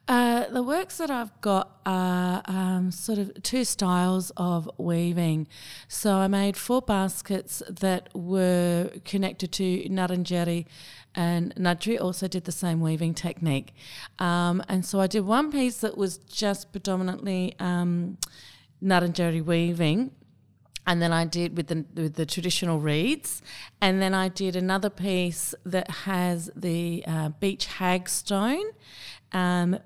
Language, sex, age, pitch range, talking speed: English, female, 30-49, 170-195 Hz, 140 wpm